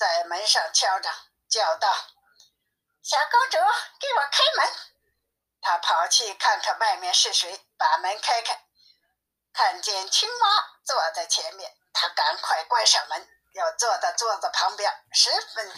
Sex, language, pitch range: female, Chinese, 270-370 Hz